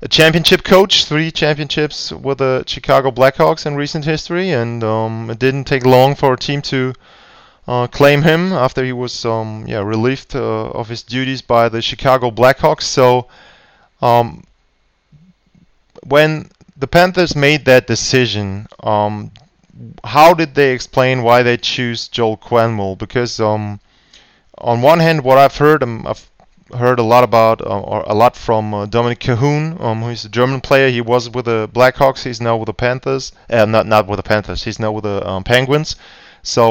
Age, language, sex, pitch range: 20-39, German, male, 115-145 Hz